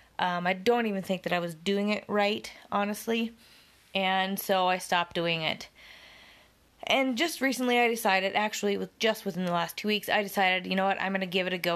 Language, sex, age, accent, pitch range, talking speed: English, female, 20-39, American, 175-215 Hz, 220 wpm